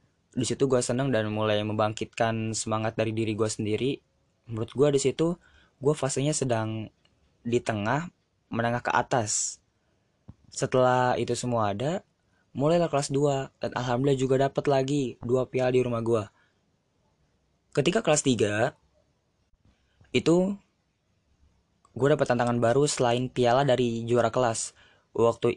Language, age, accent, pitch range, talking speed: Indonesian, 20-39, native, 110-135 Hz, 130 wpm